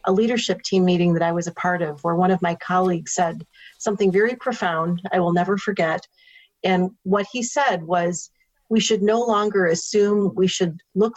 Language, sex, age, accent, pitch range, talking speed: English, female, 40-59, American, 175-200 Hz, 195 wpm